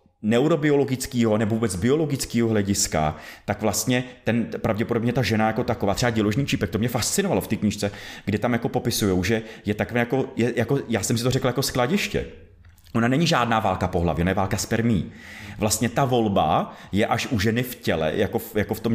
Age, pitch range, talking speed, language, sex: 30-49, 105-130 Hz, 200 wpm, Czech, male